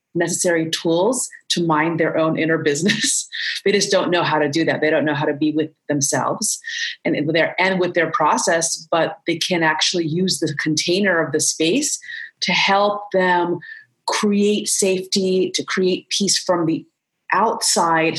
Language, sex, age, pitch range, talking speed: English, female, 30-49, 155-185 Hz, 170 wpm